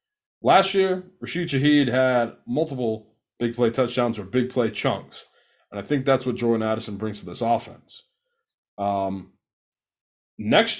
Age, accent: 20-39, American